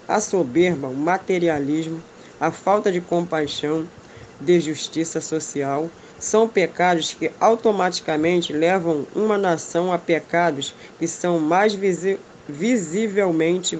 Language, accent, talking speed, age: Portuguese, Brazilian, 105 wpm, 20-39